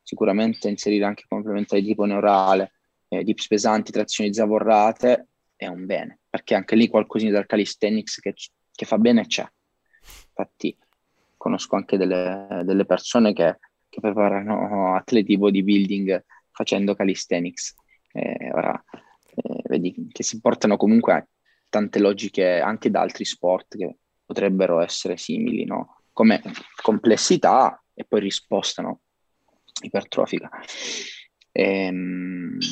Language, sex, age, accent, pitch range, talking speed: Italian, male, 20-39, native, 100-115 Hz, 120 wpm